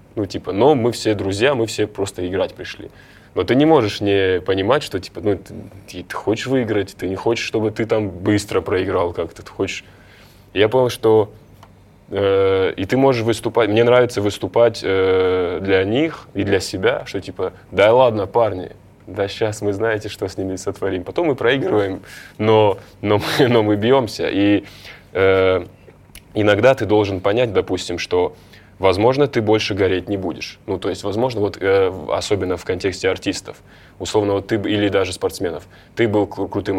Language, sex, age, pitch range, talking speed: Russian, male, 20-39, 95-110 Hz, 175 wpm